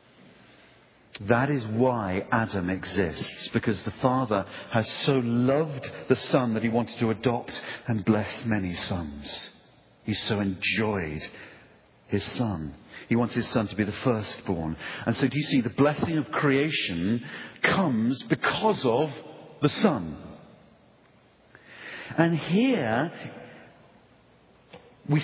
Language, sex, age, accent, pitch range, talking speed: English, male, 50-69, British, 105-160 Hz, 125 wpm